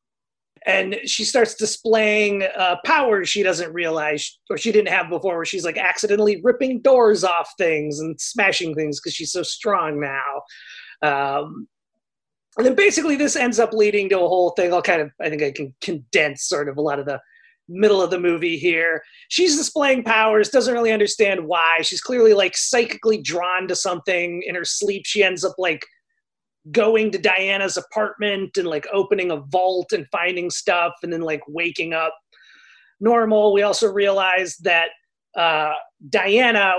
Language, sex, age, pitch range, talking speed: English, male, 30-49, 160-210 Hz, 175 wpm